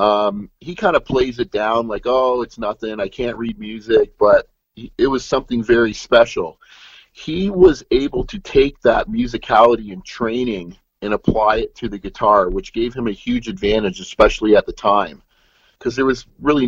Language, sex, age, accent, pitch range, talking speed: English, male, 40-59, American, 110-130 Hz, 180 wpm